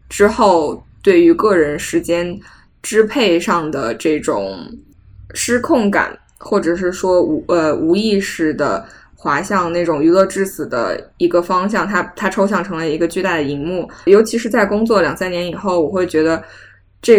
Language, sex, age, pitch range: Chinese, female, 20-39, 165-205 Hz